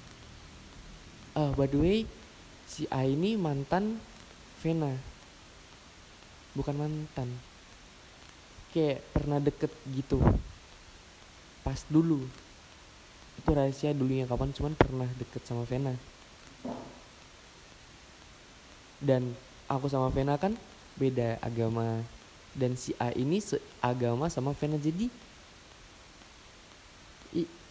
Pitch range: 115-150 Hz